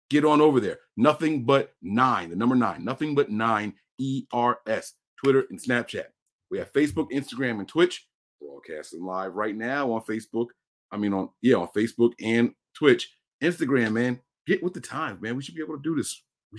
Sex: male